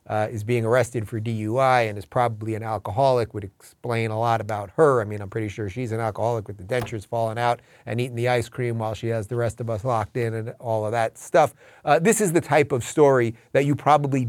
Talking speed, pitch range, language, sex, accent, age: 250 wpm, 110-135 Hz, English, male, American, 30-49